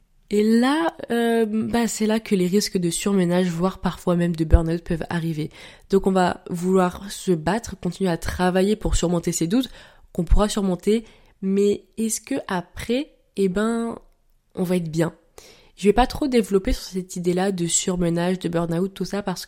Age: 20-39